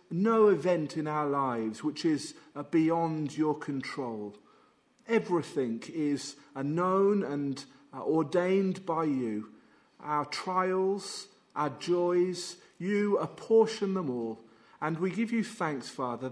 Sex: male